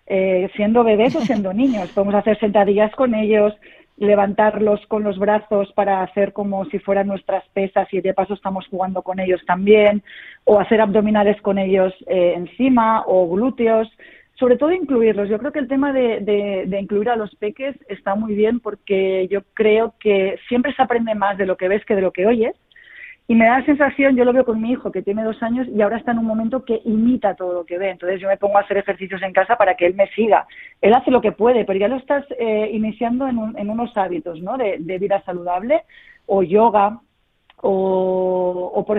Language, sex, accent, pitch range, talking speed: Spanish, female, Spanish, 190-230 Hz, 215 wpm